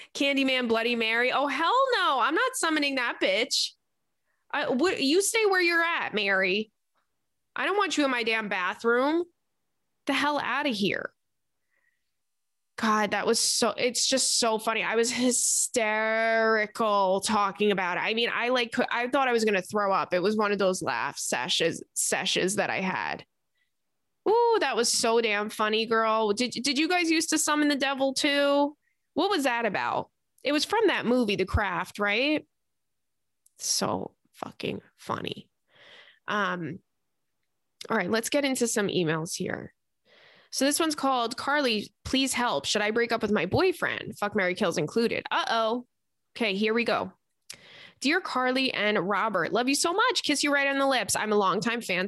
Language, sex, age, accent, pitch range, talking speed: English, female, 20-39, American, 215-285 Hz, 175 wpm